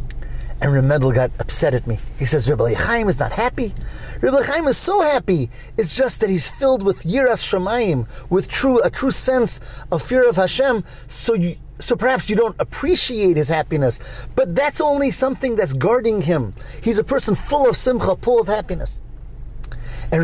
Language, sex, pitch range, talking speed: English, male, 135-210 Hz, 175 wpm